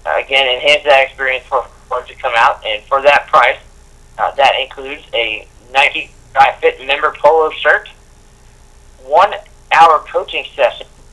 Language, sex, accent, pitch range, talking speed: English, male, American, 120-135 Hz, 145 wpm